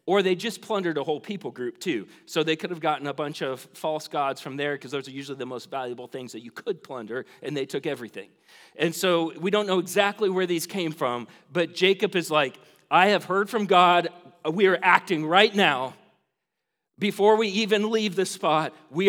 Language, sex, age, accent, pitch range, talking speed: English, male, 40-59, American, 165-220 Hz, 215 wpm